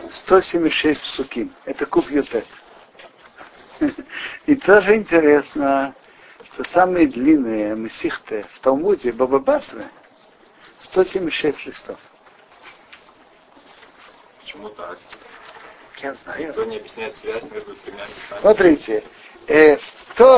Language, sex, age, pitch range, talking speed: Russian, male, 60-79, 140-225 Hz, 80 wpm